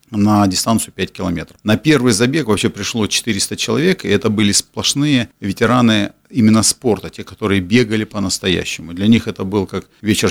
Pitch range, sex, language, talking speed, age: 95-120 Hz, male, Russian, 165 wpm, 40-59